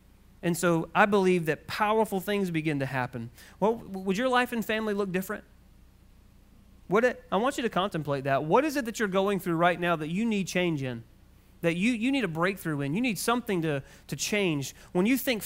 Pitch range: 135-190 Hz